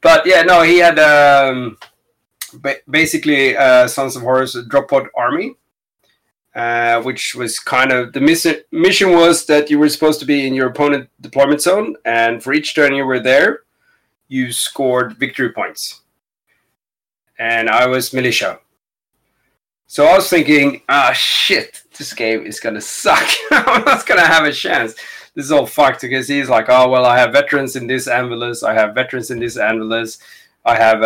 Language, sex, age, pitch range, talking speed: English, male, 30-49, 120-145 Hz, 175 wpm